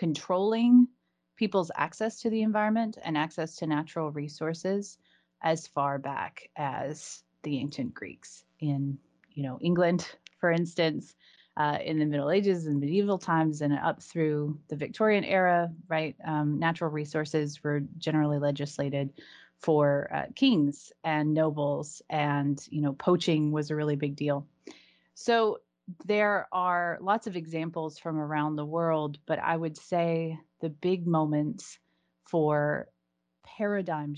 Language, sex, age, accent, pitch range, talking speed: English, female, 30-49, American, 145-170 Hz, 135 wpm